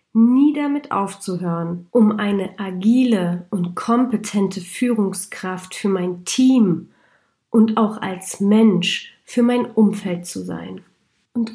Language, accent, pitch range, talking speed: German, German, 185-220 Hz, 115 wpm